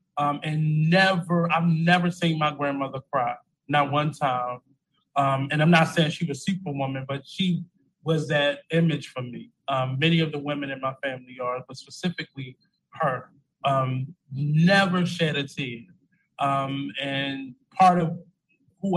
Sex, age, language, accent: male, 20-39, English, American